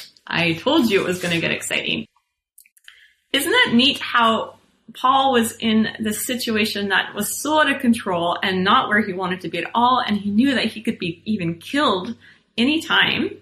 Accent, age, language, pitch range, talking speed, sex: American, 30-49, English, 195-240 Hz, 190 wpm, female